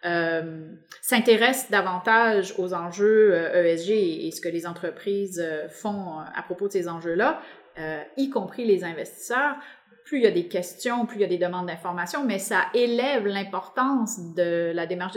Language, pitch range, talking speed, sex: English, 175-230 Hz, 160 wpm, female